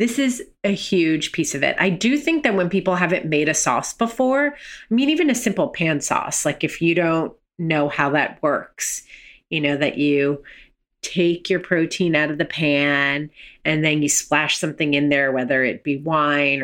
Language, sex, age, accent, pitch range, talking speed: English, female, 30-49, American, 145-185 Hz, 200 wpm